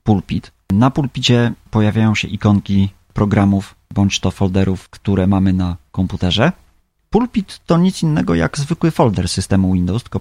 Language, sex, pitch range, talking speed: Polish, male, 95-110 Hz, 135 wpm